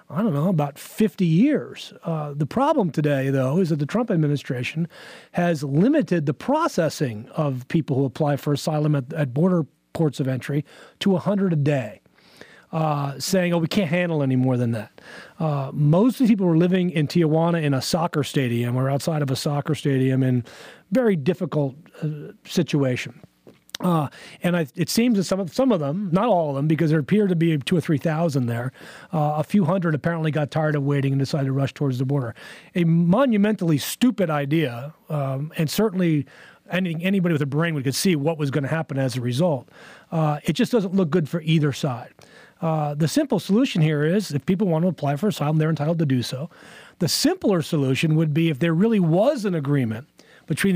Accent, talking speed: American, 205 wpm